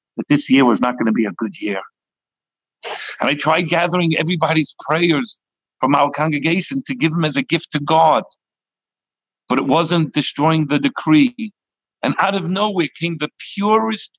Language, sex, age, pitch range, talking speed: English, male, 50-69, 150-230 Hz, 175 wpm